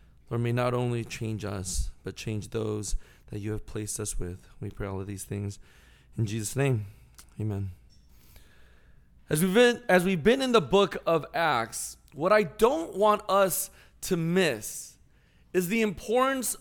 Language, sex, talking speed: English, male, 165 wpm